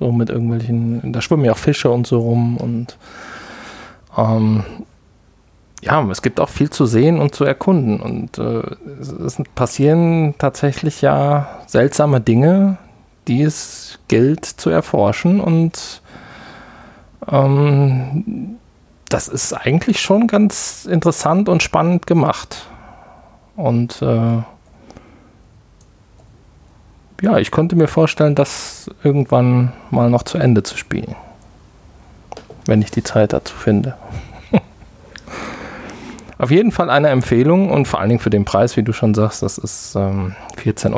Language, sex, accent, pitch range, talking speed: German, male, German, 105-145 Hz, 130 wpm